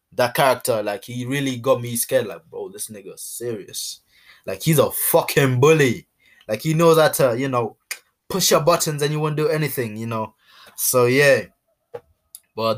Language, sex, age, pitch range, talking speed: English, male, 20-39, 110-145 Hz, 180 wpm